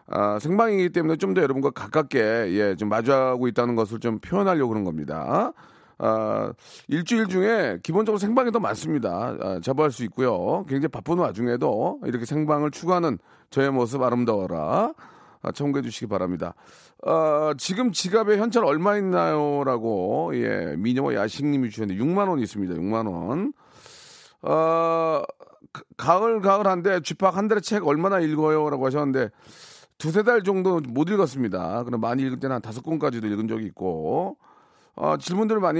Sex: male